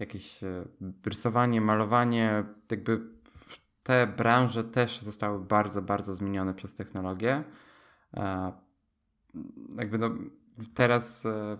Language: Polish